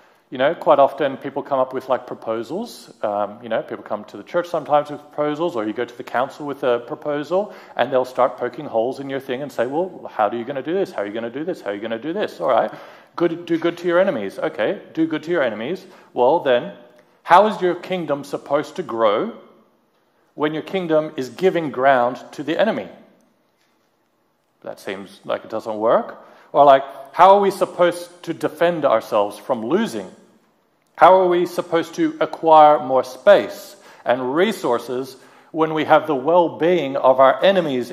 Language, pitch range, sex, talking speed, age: English, 130-175 Hz, male, 205 wpm, 40-59